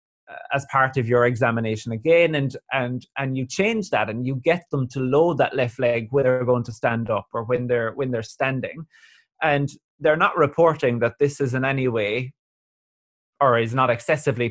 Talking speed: 195 wpm